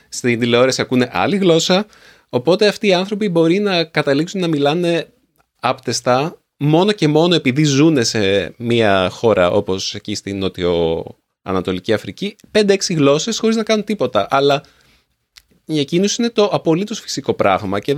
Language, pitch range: Greek, 100-155 Hz